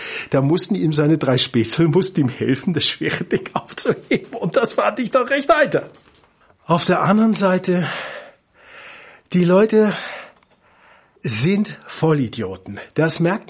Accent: German